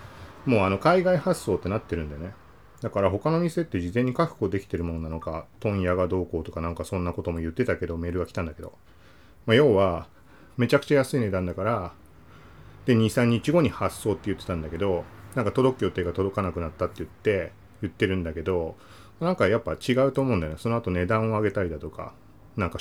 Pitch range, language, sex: 90-125 Hz, Japanese, male